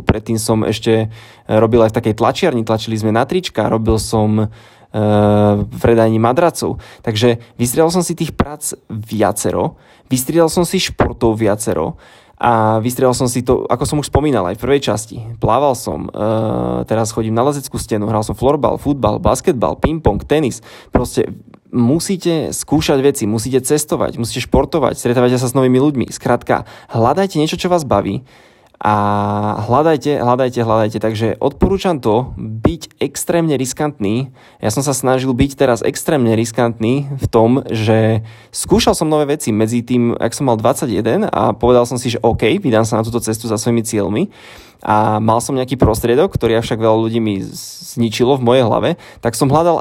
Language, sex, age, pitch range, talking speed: Slovak, male, 20-39, 110-140 Hz, 170 wpm